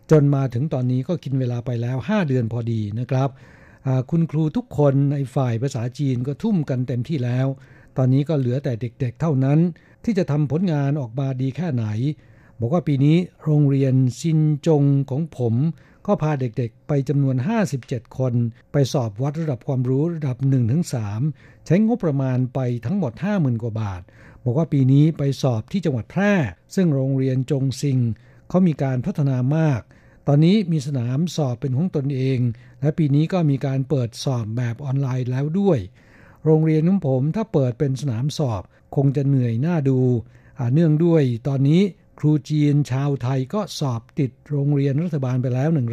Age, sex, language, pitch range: 60-79, male, Thai, 125-155 Hz